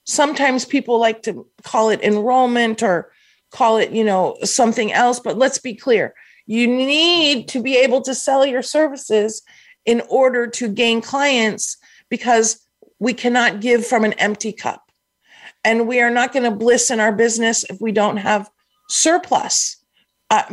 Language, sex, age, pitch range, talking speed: English, female, 40-59, 230-295 Hz, 165 wpm